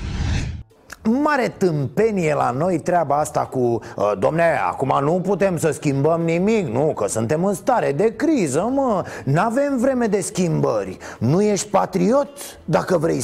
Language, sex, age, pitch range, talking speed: Romanian, male, 30-49, 165-235 Hz, 150 wpm